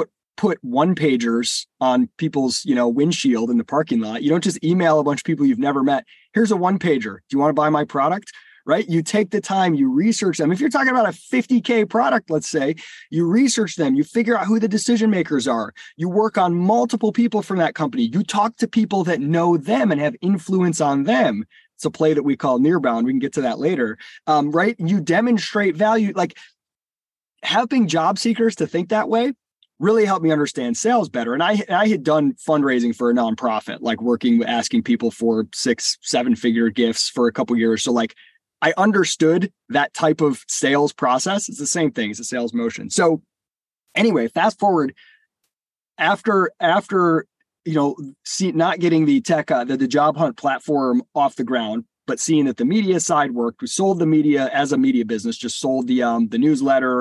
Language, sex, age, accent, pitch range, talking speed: English, male, 20-39, American, 135-220 Hz, 205 wpm